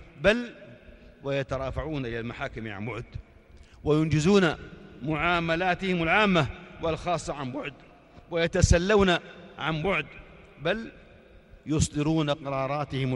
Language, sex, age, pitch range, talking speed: Arabic, male, 40-59, 135-175 Hz, 80 wpm